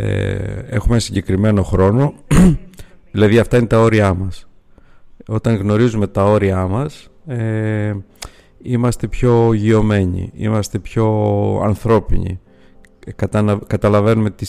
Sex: male